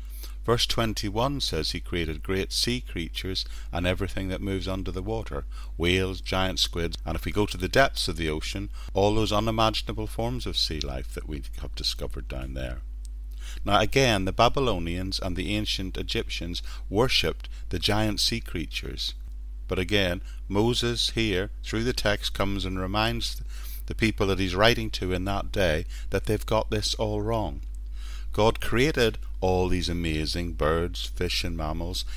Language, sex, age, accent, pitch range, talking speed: English, male, 50-69, British, 70-105 Hz, 165 wpm